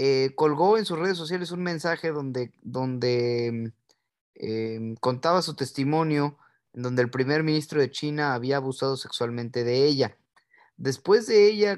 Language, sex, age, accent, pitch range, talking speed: Spanish, male, 30-49, Mexican, 125-165 Hz, 150 wpm